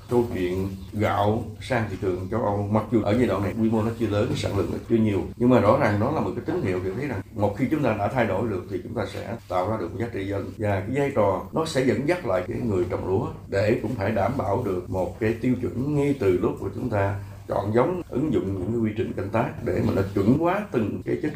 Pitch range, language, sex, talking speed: 100-125 Hz, Vietnamese, male, 285 wpm